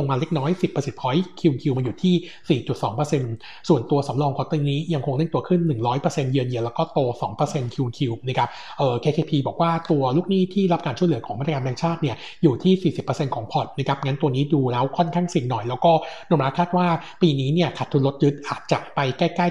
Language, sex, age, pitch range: Thai, male, 60-79, 135-165 Hz